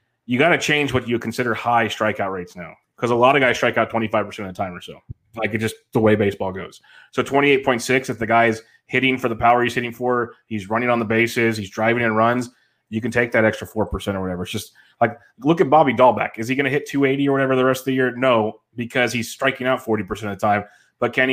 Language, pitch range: English, 110-130 Hz